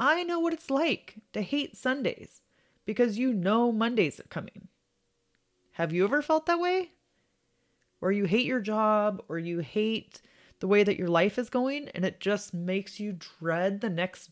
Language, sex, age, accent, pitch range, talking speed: English, female, 30-49, American, 180-255 Hz, 180 wpm